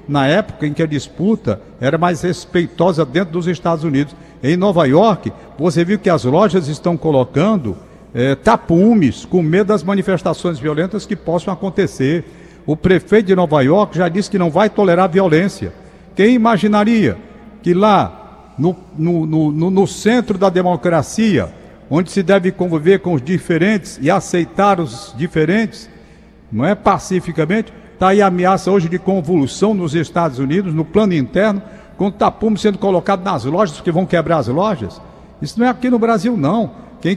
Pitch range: 165-215 Hz